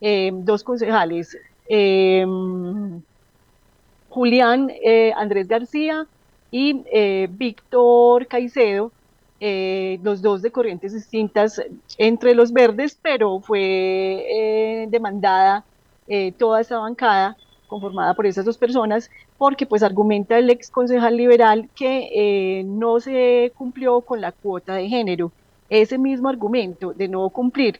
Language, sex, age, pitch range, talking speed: Spanish, female, 30-49, 195-235 Hz, 125 wpm